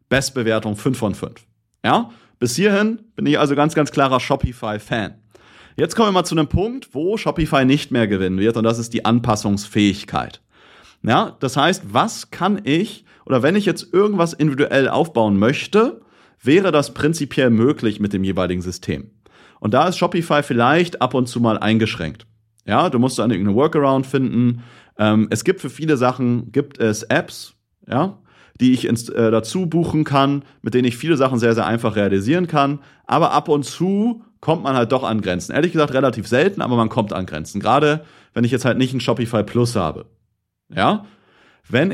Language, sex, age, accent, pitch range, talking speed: German, male, 40-59, German, 110-150 Hz, 180 wpm